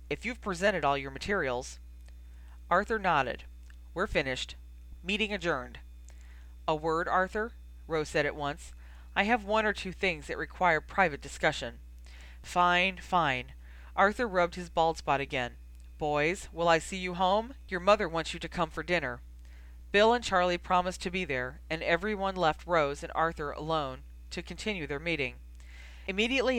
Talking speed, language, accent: 160 wpm, English, American